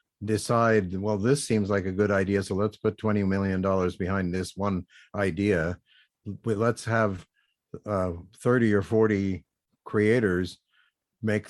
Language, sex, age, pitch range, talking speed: English, male, 50-69, 90-105 Hz, 135 wpm